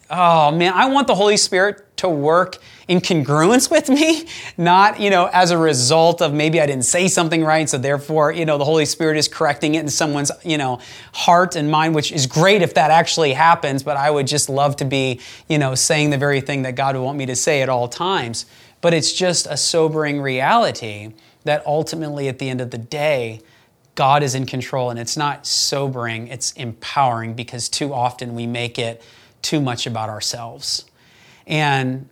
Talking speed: 200 wpm